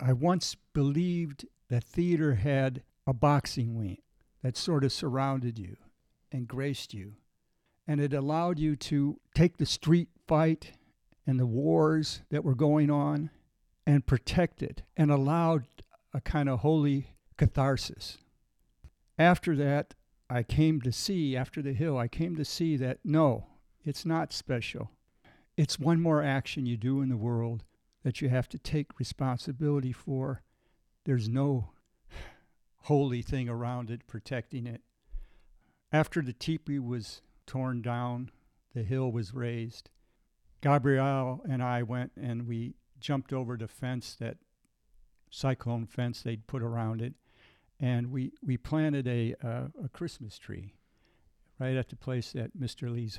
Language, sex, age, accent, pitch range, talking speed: English, male, 60-79, American, 120-145 Hz, 145 wpm